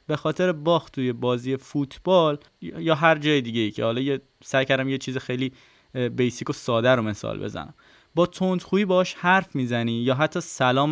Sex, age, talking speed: male, 20-39, 175 wpm